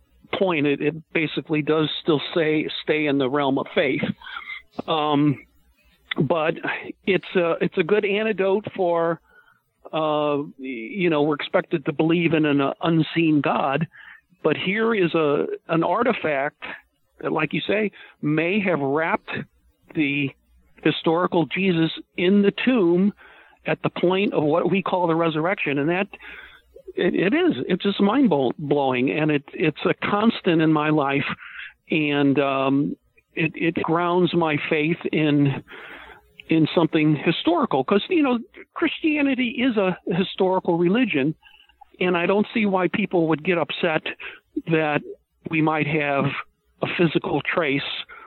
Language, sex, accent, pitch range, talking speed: English, male, American, 150-200 Hz, 140 wpm